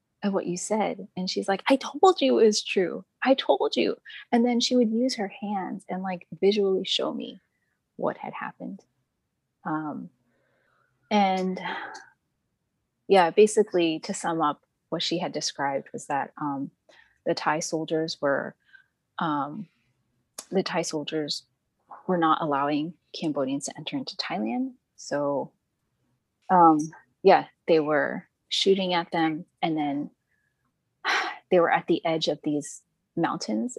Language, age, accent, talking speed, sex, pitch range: English, 30-49, American, 140 wpm, female, 150-195 Hz